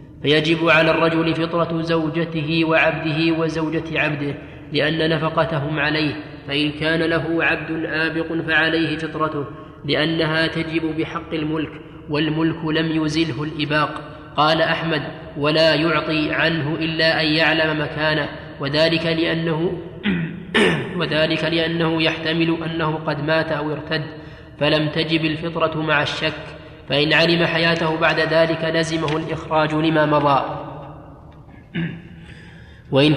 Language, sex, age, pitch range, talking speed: Arabic, male, 20-39, 155-165 Hz, 105 wpm